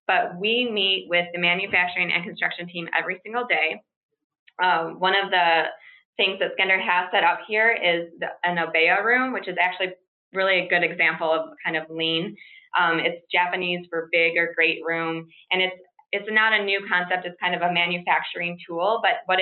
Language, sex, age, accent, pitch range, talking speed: English, female, 20-39, American, 165-185 Hz, 190 wpm